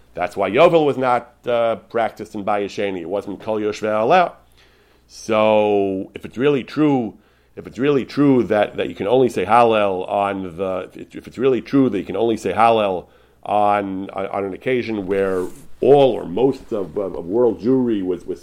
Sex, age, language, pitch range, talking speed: male, 40-59, English, 95-120 Hz, 185 wpm